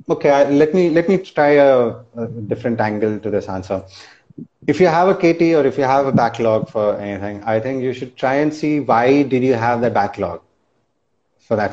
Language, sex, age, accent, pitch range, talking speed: Hindi, male, 30-49, native, 115-140 Hz, 210 wpm